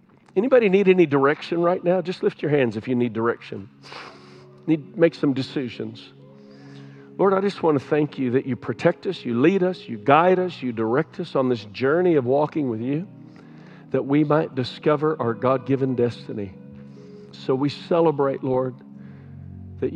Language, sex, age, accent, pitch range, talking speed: English, male, 50-69, American, 130-175 Hz, 170 wpm